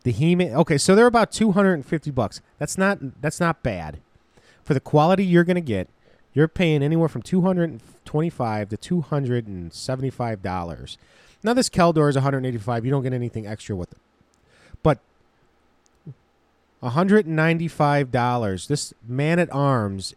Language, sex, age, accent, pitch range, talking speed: English, male, 30-49, American, 105-155 Hz, 185 wpm